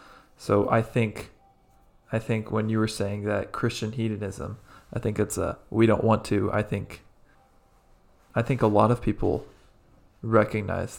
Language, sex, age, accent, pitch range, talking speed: English, male, 20-39, American, 105-115 Hz, 160 wpm